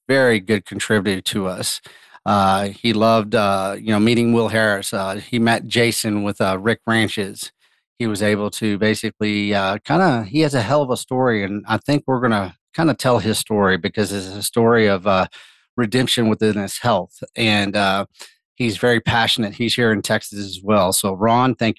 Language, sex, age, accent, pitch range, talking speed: English, male, 40-59, American, 100-120 Hz, 195 wpm